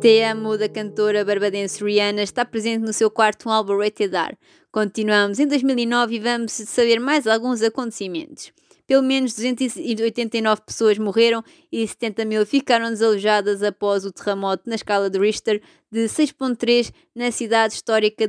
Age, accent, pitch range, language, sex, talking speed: 20-39, Brazilian, 215-245 Hz, Portuguese, female, 145 wpm